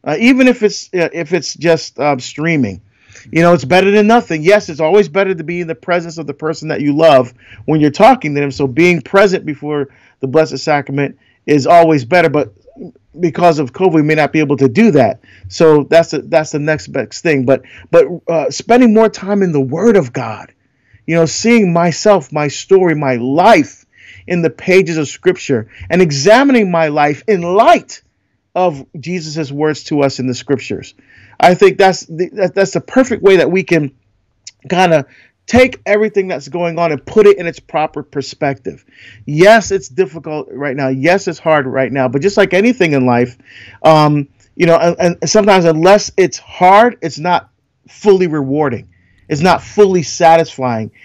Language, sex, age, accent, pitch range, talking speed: English, male, 40-59, American, 140-185 Hz, 190 wpm